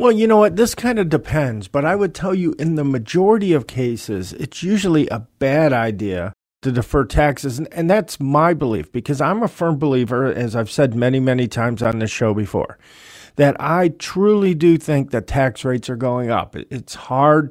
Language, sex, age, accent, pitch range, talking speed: English, male, 50-69, American, 120-155 Hz, 200 wpm